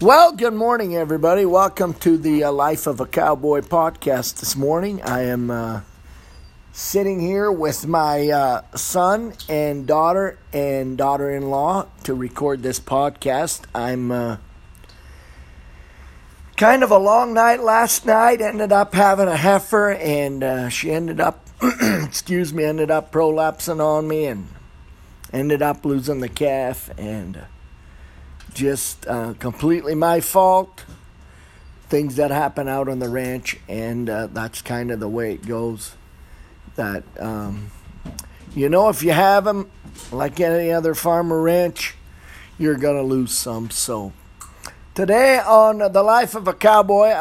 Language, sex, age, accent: English, male, 50-69, American